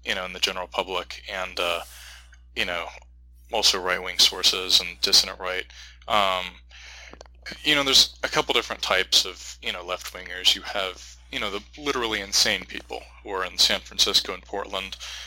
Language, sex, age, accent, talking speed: English, male, 20-39, American, 170 wpm